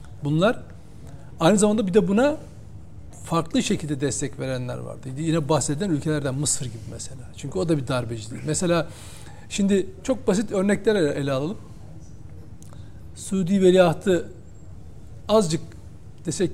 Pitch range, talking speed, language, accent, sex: 135-190 Hz, 120 wpm, Turkish, native, male